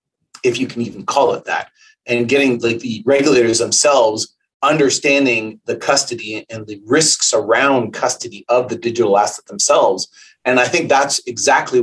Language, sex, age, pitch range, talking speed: English, male, 30-49, 115-140 Hz, 155 wpm